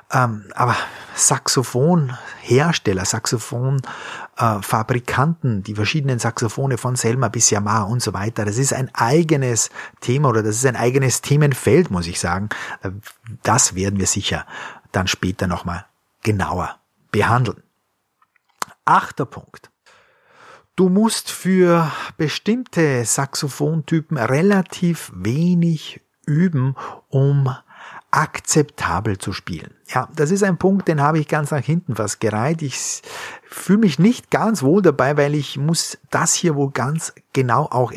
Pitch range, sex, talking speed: 110-155 Hz, male, 125 wpm